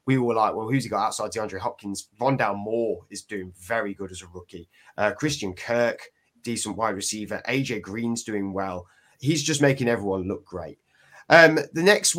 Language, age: English, 30-49